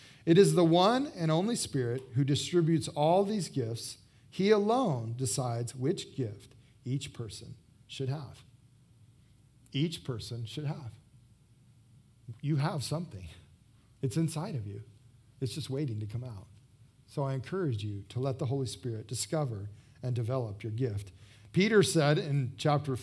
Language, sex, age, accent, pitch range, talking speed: English, male, 40-59, American, 120-160 Hz, 145 wpm